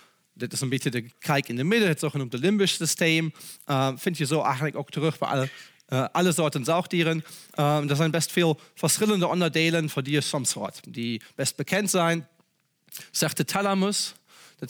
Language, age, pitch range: Dutch, 40-59, 145-185 Hz